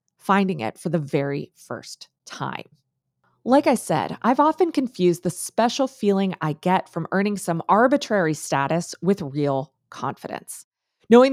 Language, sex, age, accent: English, female, 20-39, American